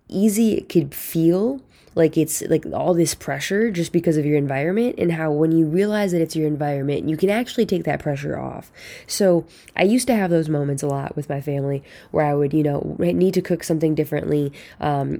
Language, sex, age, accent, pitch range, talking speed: English, female, 10-29, American, 150-180 Hz, 215 wpm